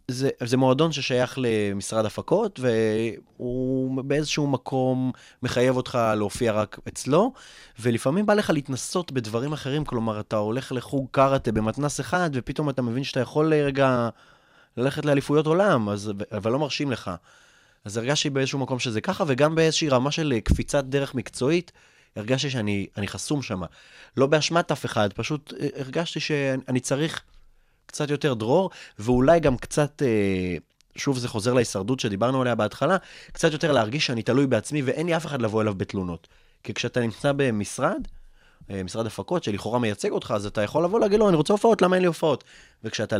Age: 20-39